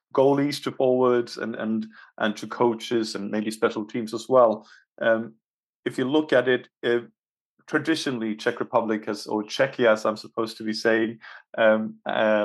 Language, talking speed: English, 160 wpm